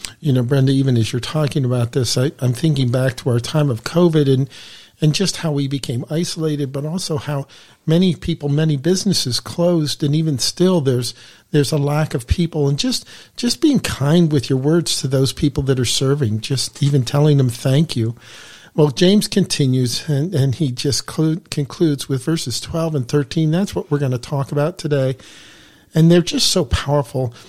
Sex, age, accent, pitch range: male, 50-69, American, 130-165 Hz